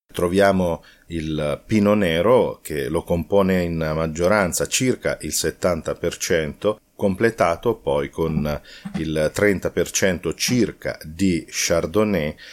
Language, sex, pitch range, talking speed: Italian, male, 80-100 Hz, 95 wpm